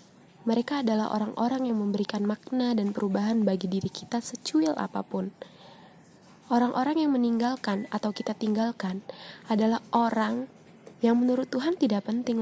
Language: Indonesian